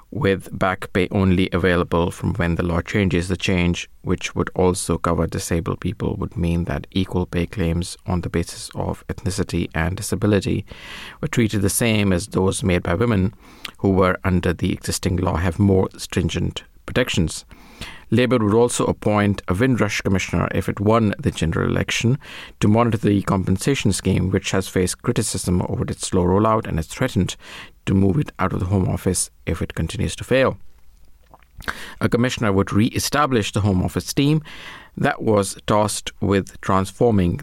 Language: English